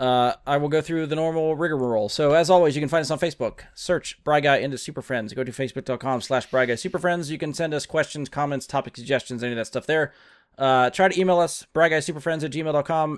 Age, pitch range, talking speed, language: 30-49, 125-155 Hz, 225 wpm, English